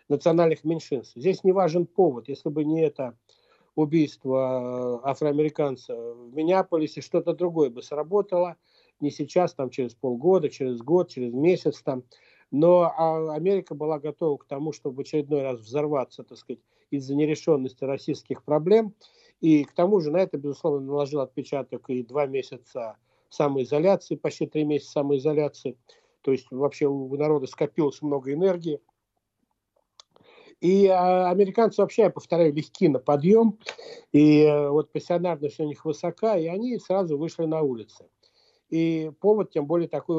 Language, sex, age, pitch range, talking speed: Russian, male, 60-79, 135-165 Hz, 140 wpm